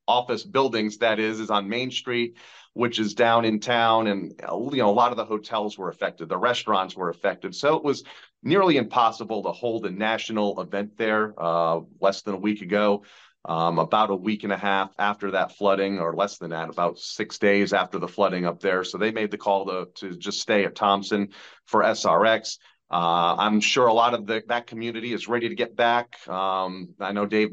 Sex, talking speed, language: male, 210 wpm, English